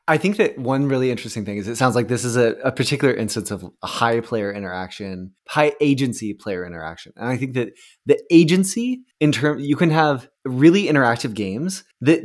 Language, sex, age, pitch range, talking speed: English, male, 20-39, 110-145 Hz, 200 wpm